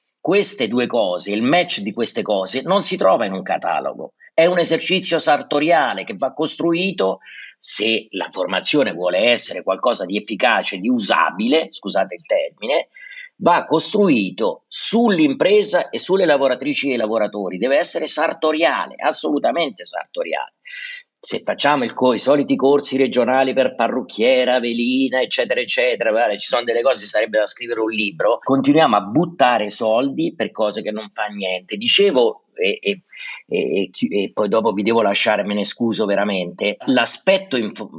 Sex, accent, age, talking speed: male, native, 40-59, 155 wpm